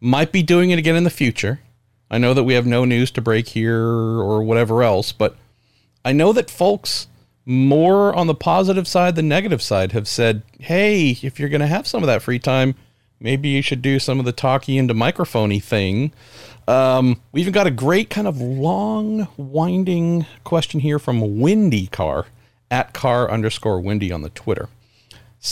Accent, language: American, English